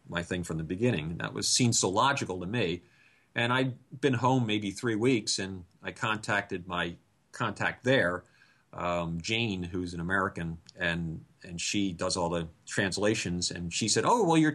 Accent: American